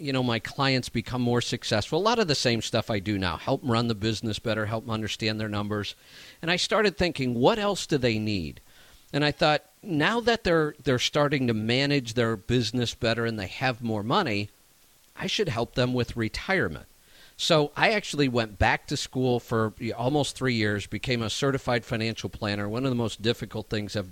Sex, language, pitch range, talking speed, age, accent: male, English, 110-145 Hz, 205 wpm, 50-69, American